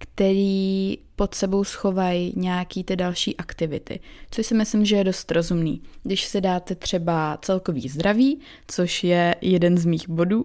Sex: female